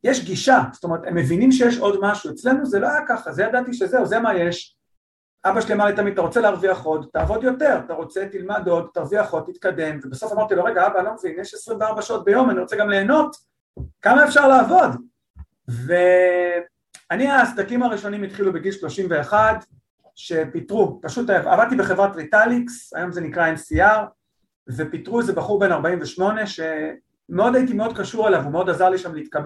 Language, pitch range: Hebrew, 165-225 Hz